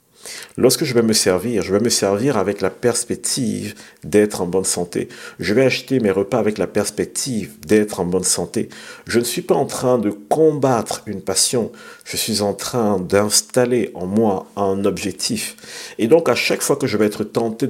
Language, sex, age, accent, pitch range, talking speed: French, male, 50-69, French, 100-125 Hz, 195 wpm